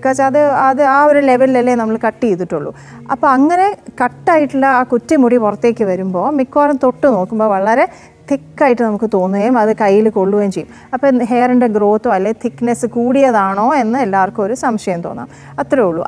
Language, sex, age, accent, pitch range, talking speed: Malayalam, female, 30-49, native, 205-255 Hz, 150 wpm